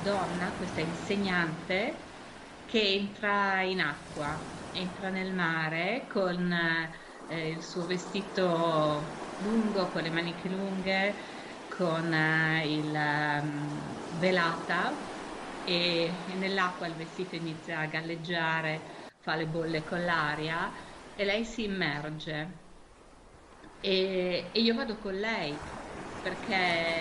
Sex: female